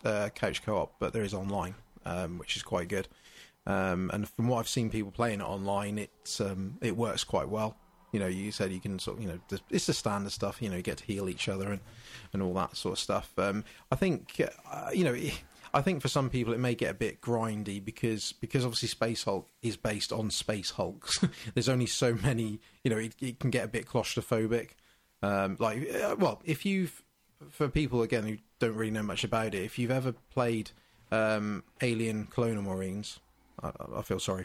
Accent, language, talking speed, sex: British, English, 215 wpm, male